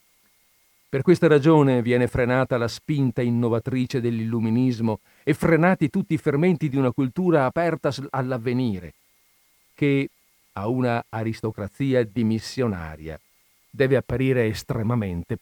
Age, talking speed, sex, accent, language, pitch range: 50-69, 105 wpm, male, native, Italian, 115-155 Hz